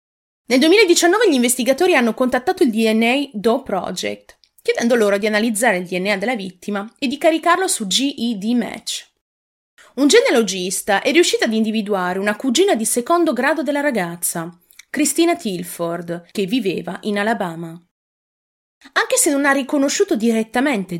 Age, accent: 30-49, native